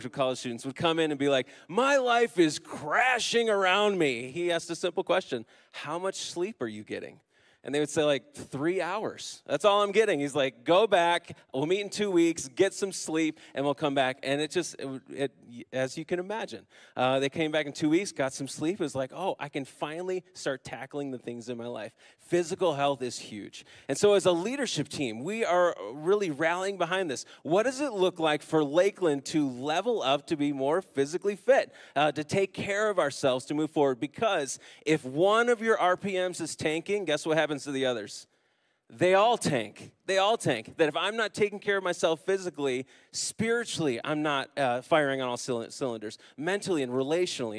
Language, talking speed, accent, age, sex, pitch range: English, 205 wpm, American, 30-49, male, 135-185 Hz